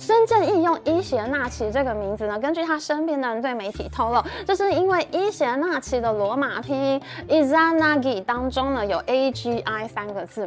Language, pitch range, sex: Chinese, 240-345 Hz, female